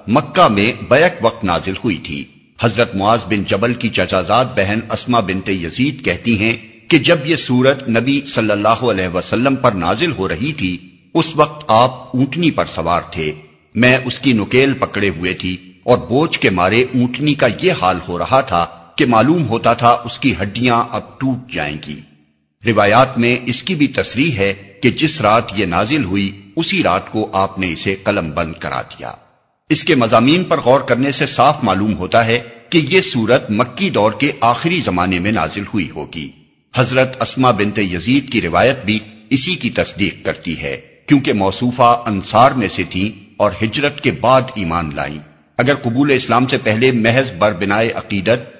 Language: Urdu